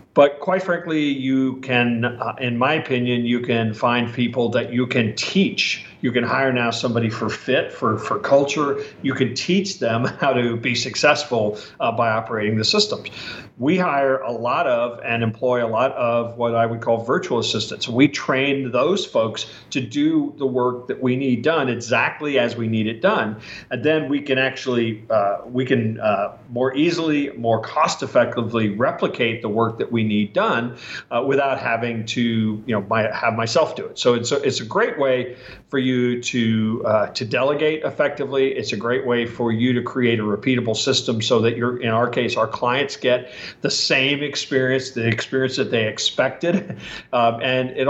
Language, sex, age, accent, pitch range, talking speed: English, male, 50-69, American, 115-135 Hz, 190 wpm